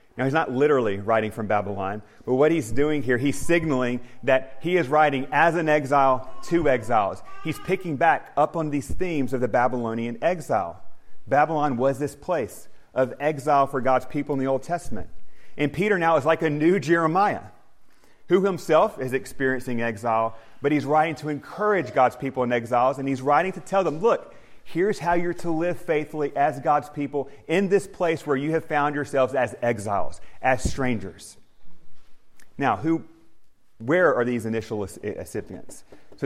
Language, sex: English, male